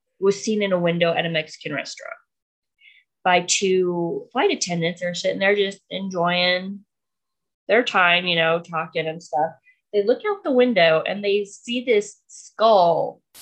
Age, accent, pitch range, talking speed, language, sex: 20-39, American, 170-235 Hz, 155 wpm, English, female